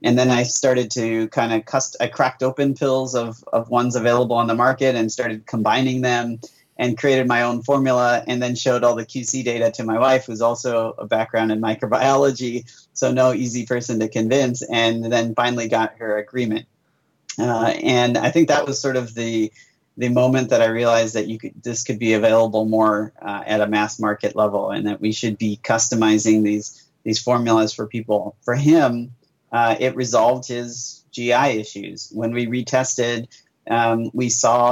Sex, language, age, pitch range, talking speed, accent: male, English, 30-49, 110-125 Hz, 190 wpm, American